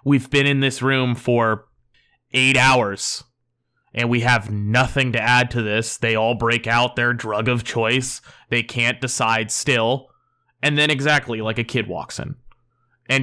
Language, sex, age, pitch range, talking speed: English, male, 20-39, 120-155 Hz, 170 wpm